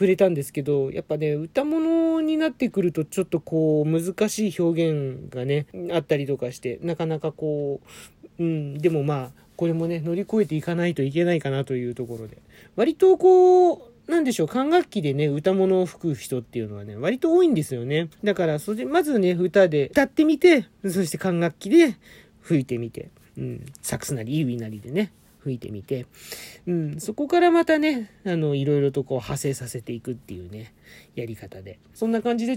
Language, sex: Japanese, male